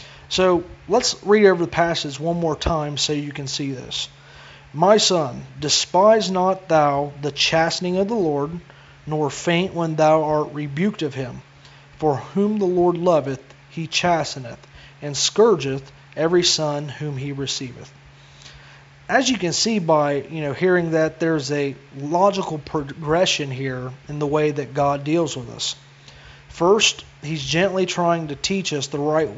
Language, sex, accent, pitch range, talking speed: English, male, American, 140-170 Hz, 155 wpm